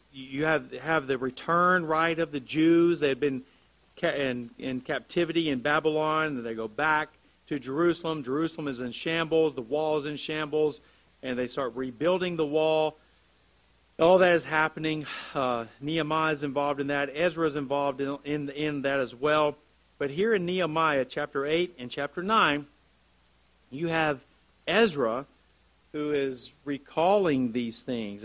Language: English